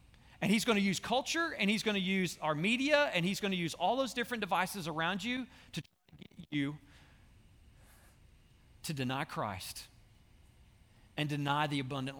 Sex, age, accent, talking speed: male, 40-59, American, 175 wpm